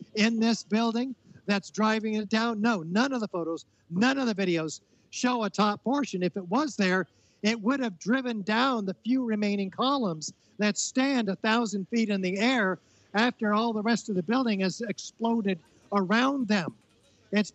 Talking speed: 180 wpm